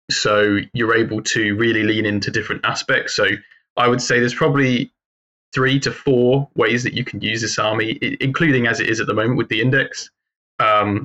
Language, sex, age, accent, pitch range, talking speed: English, male, 20-39, British, 105-130 Hz, 195 wpm